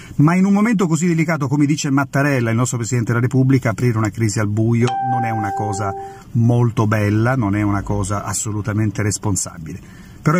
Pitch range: 110-145 Hz